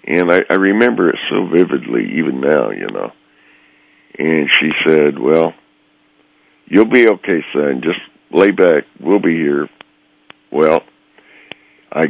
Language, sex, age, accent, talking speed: English, male, 60-79, American, 135 wpm